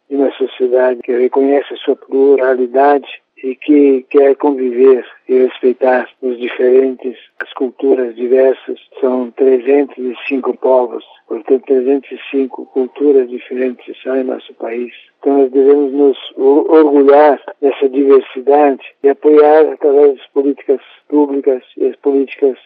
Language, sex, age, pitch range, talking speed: Portuguese, male, 60-79, 130-145 Hz, 120 wpm